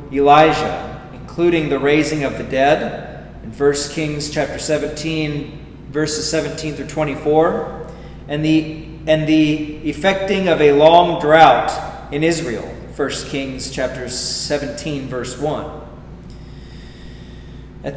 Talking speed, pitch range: 115 wpm, 140-165 Hz